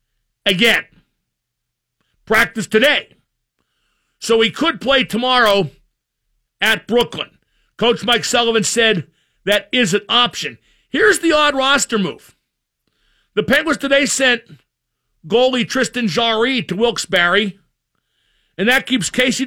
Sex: male